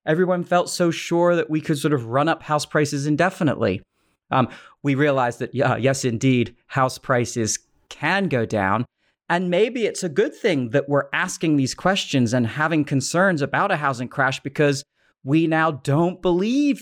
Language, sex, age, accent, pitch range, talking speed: English, male, 30-49, American, 130-175 Hz, 170 wpm